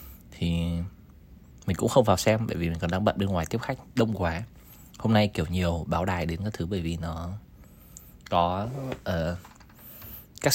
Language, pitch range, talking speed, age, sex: Vietnamese, 85-110 Hz, 190 wpm, 20-39, male